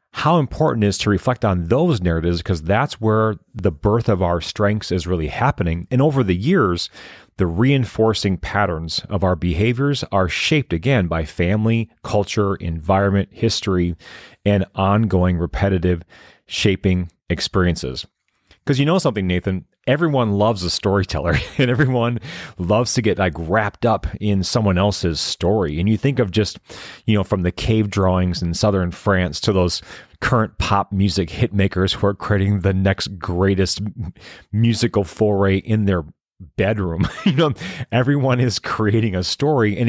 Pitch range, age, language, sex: 95-115 Hz, 30-49, English, male